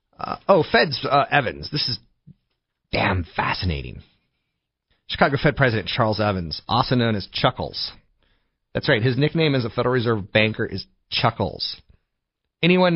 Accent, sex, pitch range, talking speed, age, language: American, male, 95-130 Hz, 140 wpm, 30-49, English